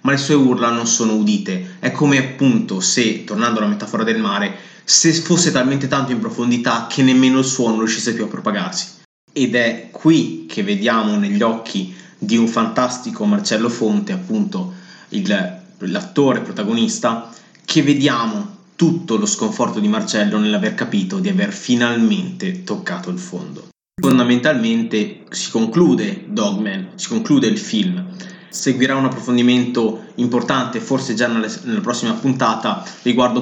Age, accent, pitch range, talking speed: 20-39, native, 120-200 Hz, 140 wpm